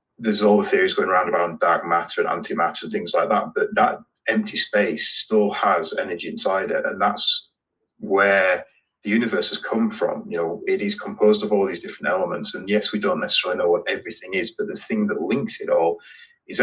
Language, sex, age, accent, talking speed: English, male, 30-49, British, 215 wpm